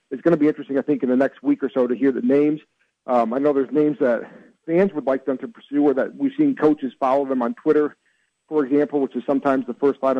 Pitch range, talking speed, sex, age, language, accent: 130-150 Hz, 270 wpm, male, 40-59, English, American